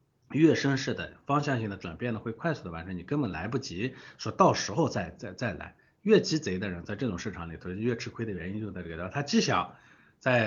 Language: Chinese